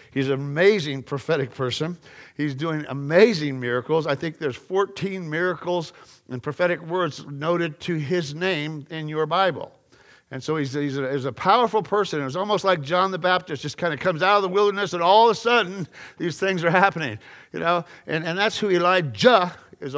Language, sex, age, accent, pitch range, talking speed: English, male, 50-69, American, 155-195 Hz, 195 wpm